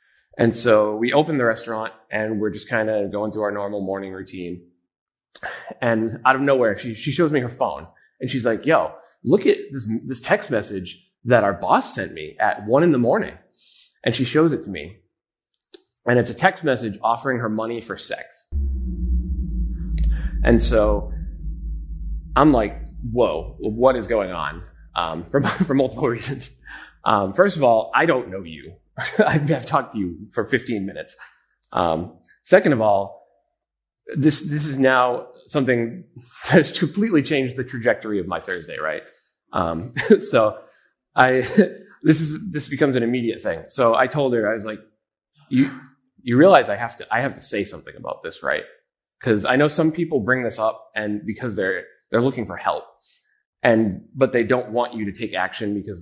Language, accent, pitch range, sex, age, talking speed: English, American, 105-135 Hz, male, 20-39, 180 wpm